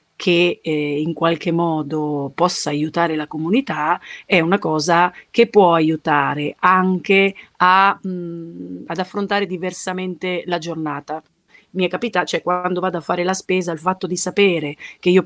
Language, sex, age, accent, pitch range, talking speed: Italian, female, 30-49, native, 155-200 Hz, 155 wpm